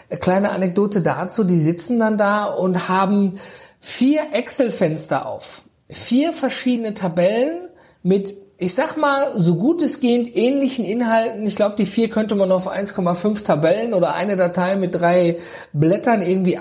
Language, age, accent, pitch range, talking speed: German, 50-69, German, 155-205 Hz, 150 wpm